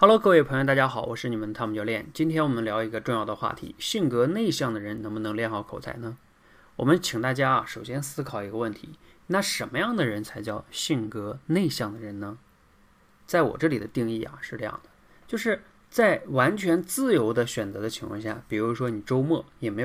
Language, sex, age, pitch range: Chinese, male, 20-39, 110-150 Hz